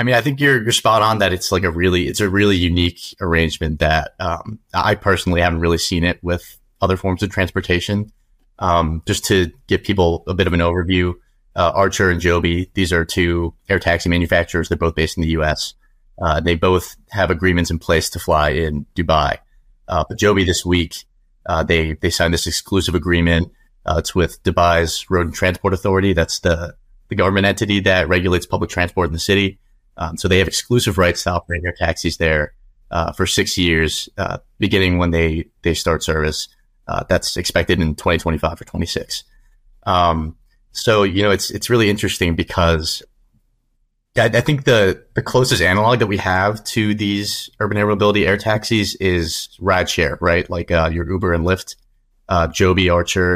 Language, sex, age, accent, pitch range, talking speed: English, male, 30-49, American, 85-100 Hz, 190 wpm